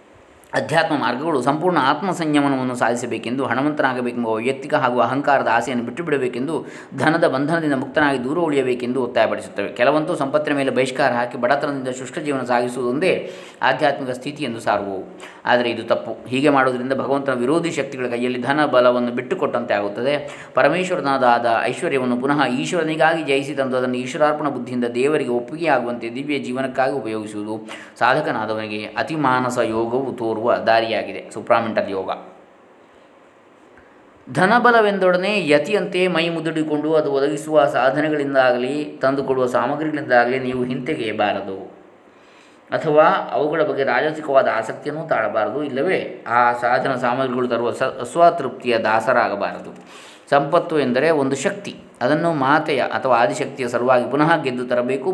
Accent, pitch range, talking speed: native, 120-150 Hz, 110 wpm